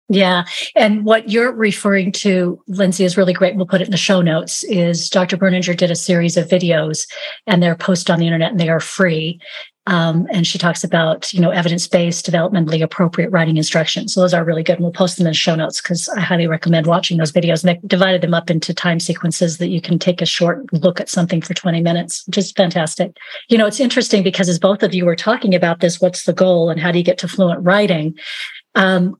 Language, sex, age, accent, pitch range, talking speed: English, female, 40-59, American, 170-205 Hz, 235 wpm